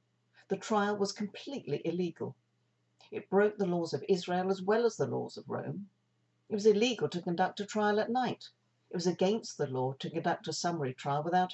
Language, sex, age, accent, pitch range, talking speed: English, female, 50-69, British, 115-185 Hz, 200 wpm